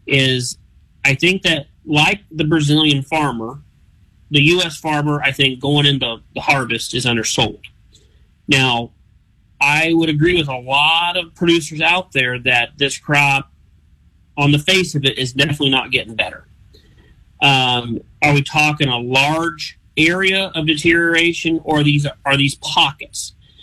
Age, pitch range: 40-59, 130-155 Hz